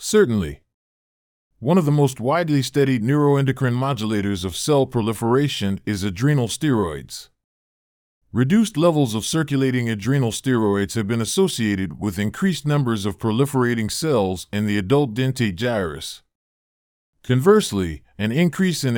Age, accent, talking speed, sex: 40-59, American, 125 wpm, male